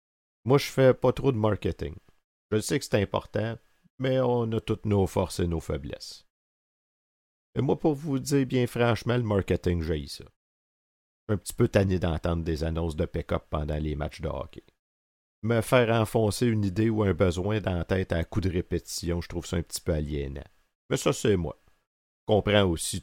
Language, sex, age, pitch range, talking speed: French, male, 50-69, 80-110 Hz, 205 wpm